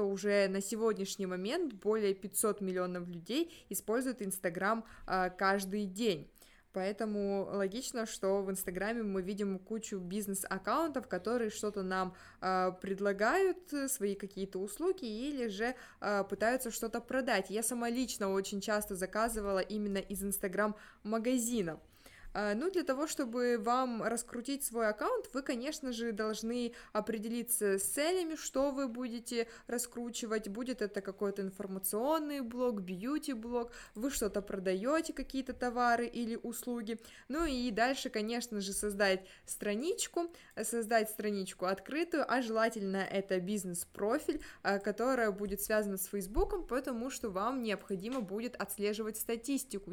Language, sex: Russian, female